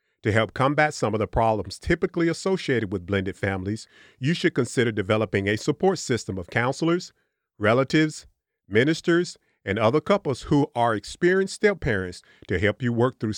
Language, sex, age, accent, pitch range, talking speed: English, male, 40-59, American, 105-150 Hz, 160 wpm